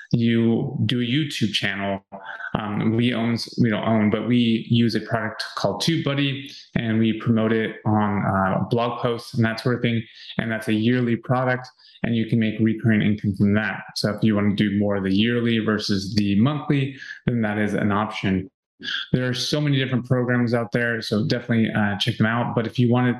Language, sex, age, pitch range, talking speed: English, male, 20-39, 105-125 Hz, 205 wpm